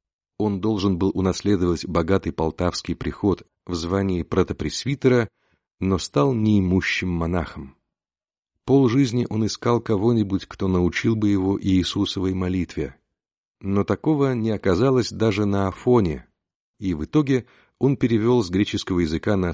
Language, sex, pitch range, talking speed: Russian, male, 85-110 Hz, 125 wpm